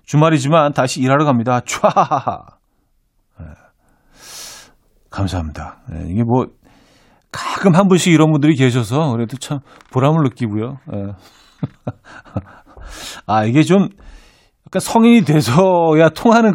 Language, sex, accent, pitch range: Korean, male, native, 110-155 Hz